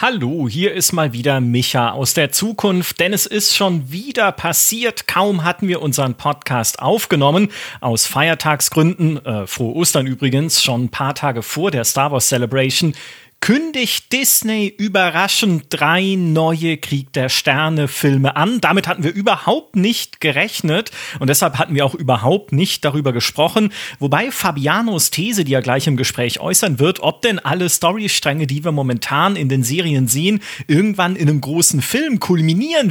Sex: male